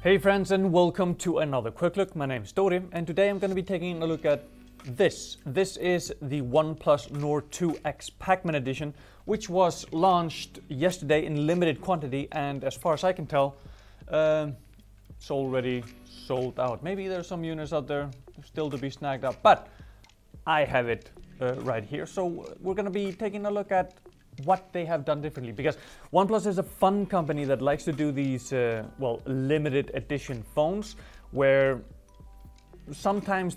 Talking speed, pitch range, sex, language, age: 180 wpm, 130-175 Hz, male, English, 30-49